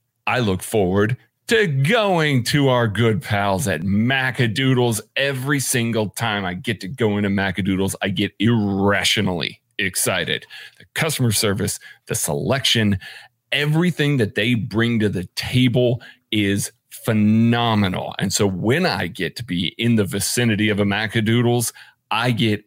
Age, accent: 40-59, American